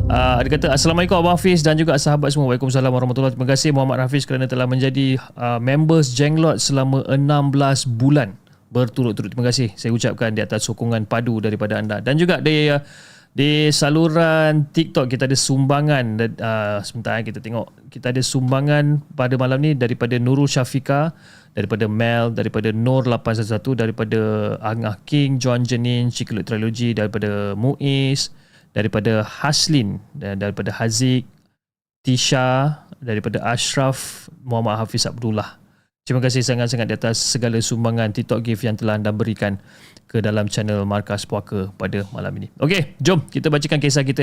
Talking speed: 150 wpm